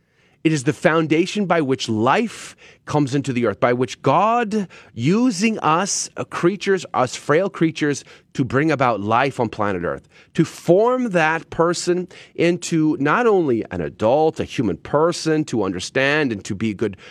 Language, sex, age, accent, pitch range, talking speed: English, male, 30-49, American, 135-195 Hz, 165 wpm